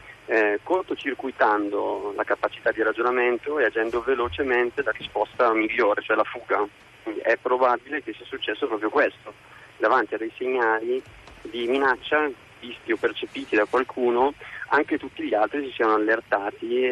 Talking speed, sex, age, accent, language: 140 wpm, male, 30-49, native, Italian